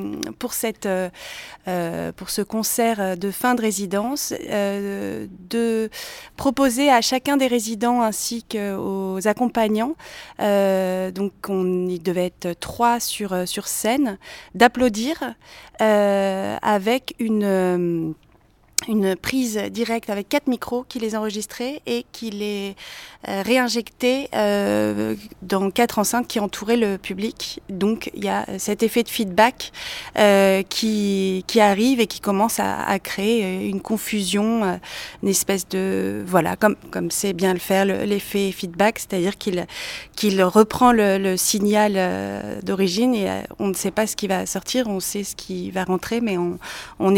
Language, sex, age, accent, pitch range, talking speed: French, female, 30-49, French, 190-230 Hz, 140 wpm